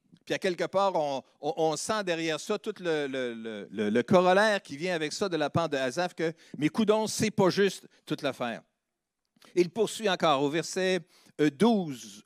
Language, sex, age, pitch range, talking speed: French, male, 50-69, 155-210 Hz, 195 wpm